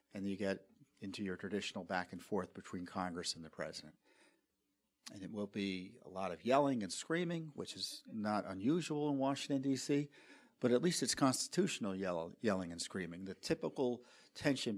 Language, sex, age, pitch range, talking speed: English, male, 50-69, 100-140 Hz, 170 wpm